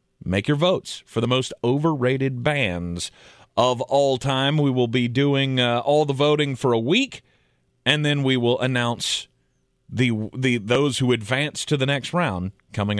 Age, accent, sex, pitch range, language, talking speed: 30-49, American, male, 105-140 Hz, English, 170 wpm